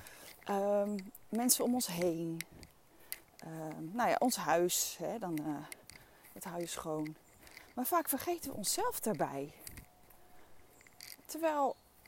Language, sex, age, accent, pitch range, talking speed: Dutch, female, 30-49, Dutch, 170-265 Hz, 120 wpm